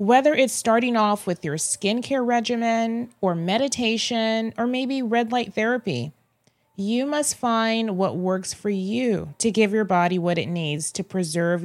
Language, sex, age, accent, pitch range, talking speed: English, female, 30-49, American, 175-250 Hz, 160 wpm